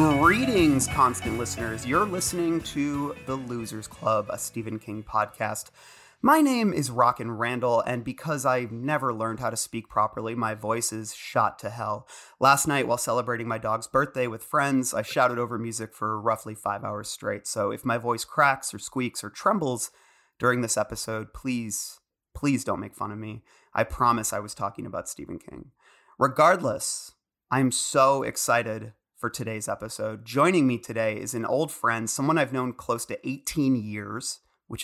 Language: English